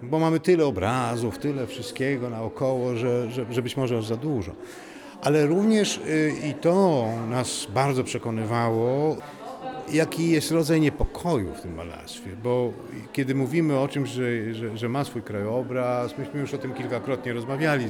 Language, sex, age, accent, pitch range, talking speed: Polish, male, 50-69, native, 120-155 Hz, 155 wpm